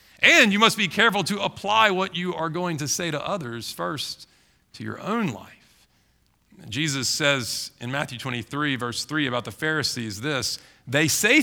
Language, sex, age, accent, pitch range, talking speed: English, male, 40-59, American, 130-195 Hz, 175 wpm